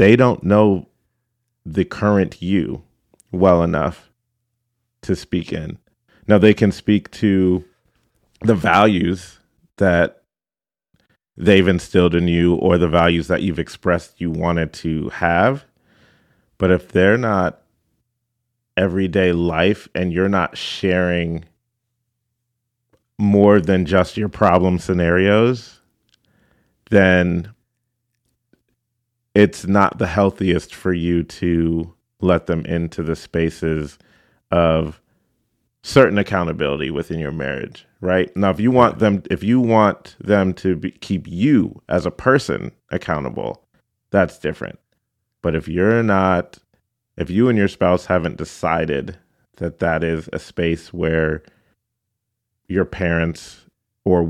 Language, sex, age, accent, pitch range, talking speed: English, male, 30-49, American, 85-110 Hz, 120 wpm